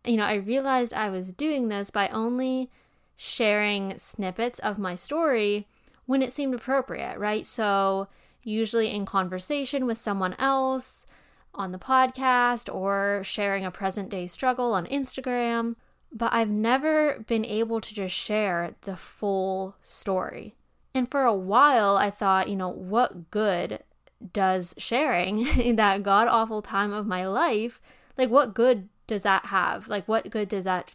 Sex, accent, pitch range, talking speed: female, American, 195-240 Hz, 150 wpm